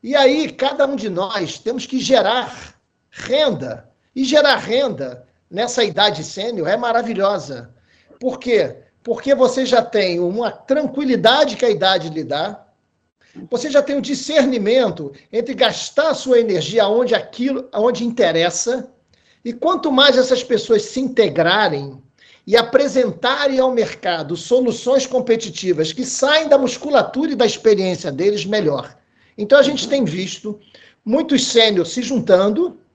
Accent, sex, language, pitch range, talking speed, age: Brazilian, male, Portuguese, 195-260 Hz, 140 wpm, 50-69